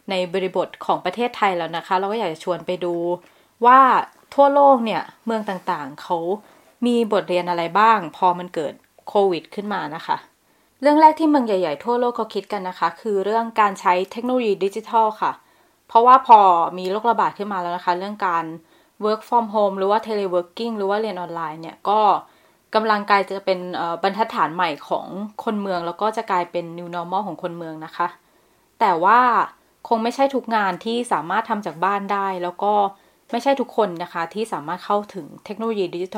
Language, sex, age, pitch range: Thai, female, 20-39, 180-220 Hz